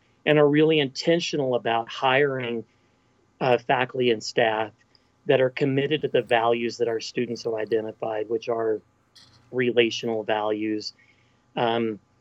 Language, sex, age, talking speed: English, male, 40-59, 130 wpm